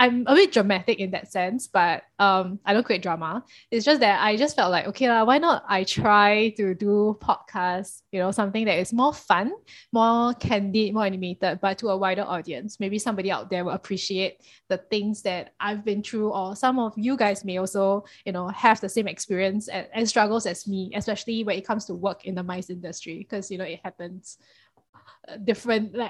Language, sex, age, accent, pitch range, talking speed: English, female, 20-39, Malaysian, 190-230 Hz, 205 wpm